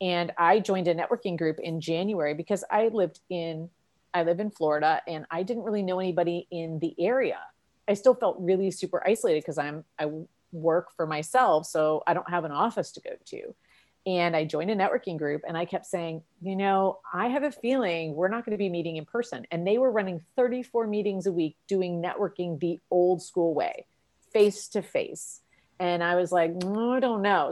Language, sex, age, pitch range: English, female, 30-49, 165-200 Hz